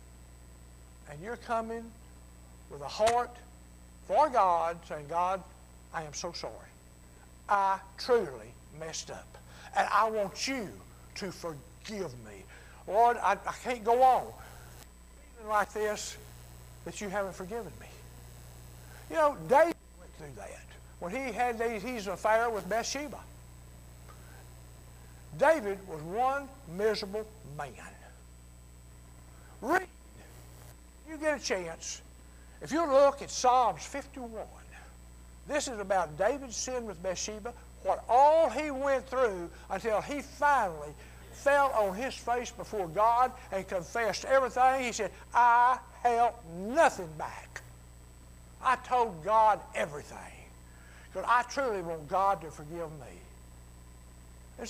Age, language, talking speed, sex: 60-79, English, 120 wpm, male